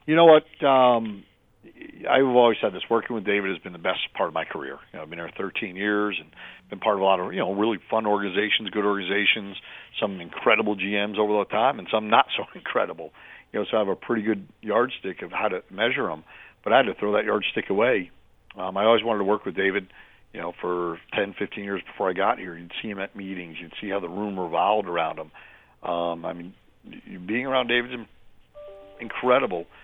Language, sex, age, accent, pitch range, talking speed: English, male, 50-69, American, 95-115 Hz, 225 wpm